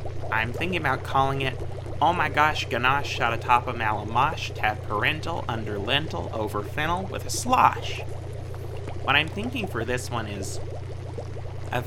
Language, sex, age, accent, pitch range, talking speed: English, male, 30-49, American, 105-120 Hz, 150 wpm